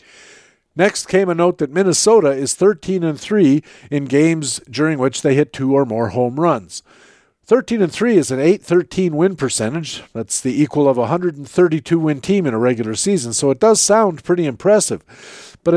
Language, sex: English, male